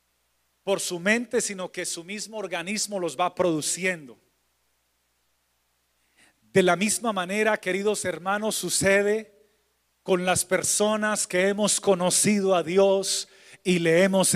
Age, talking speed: 40-59, 120 wpm